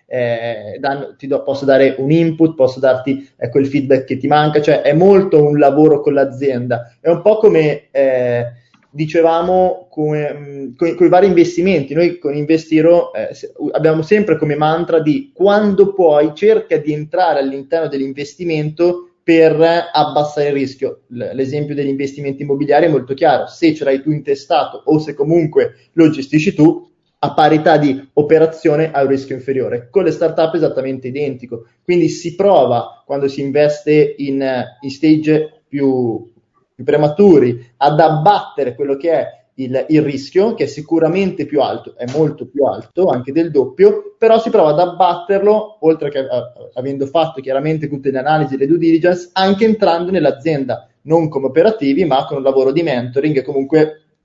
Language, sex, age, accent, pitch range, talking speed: Italian, male, 20-39, native, 135-170 Hz, 160 wpm